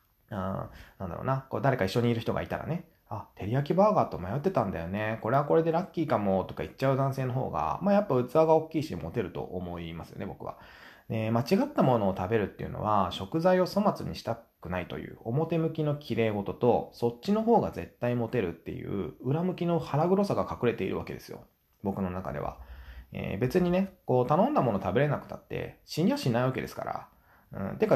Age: 20-39